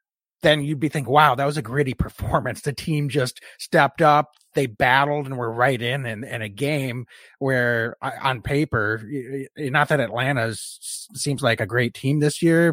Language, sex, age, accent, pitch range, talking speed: English, male, 30-49, American, 110-140 Hz, 180 wpm